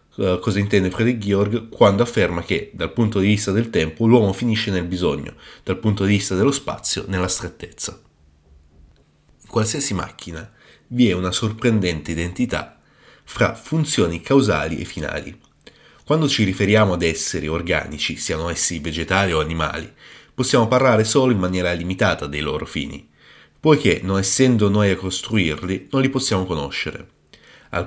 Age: 30-49